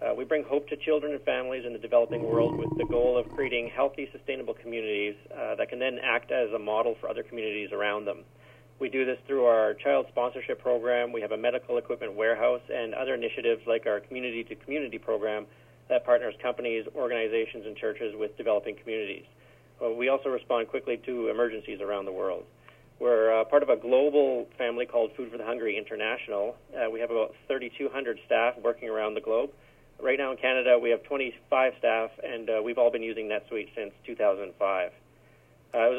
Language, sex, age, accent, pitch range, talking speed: English, male, 40-59, American, 115-160 Hz, 190 wpm